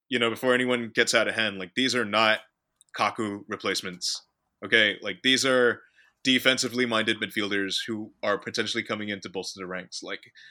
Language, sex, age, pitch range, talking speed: English, male, 20-39, 100-120 Hz, 175 wpm